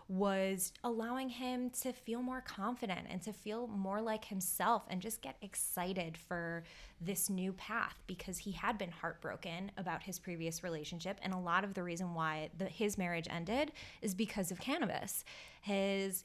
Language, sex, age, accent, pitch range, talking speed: English, female, 20-39, American, 175-220 Hz, 165 wpm